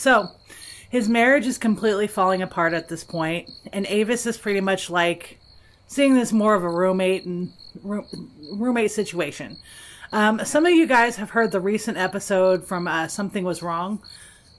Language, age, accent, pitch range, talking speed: English, 30-49, American, 185-230 Hz, 170 wpm